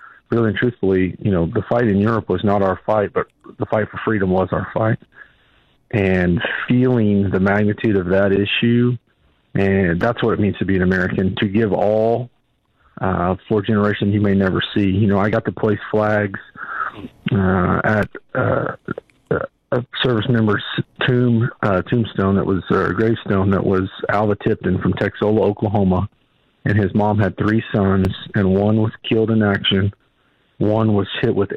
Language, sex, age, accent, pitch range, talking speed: English, male, 40-59, American, 95-110 Hz, 175 wpm